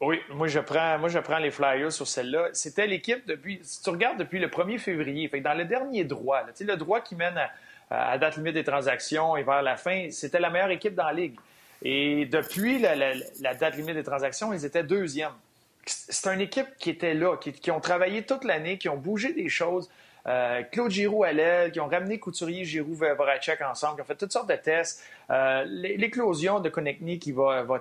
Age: 30-49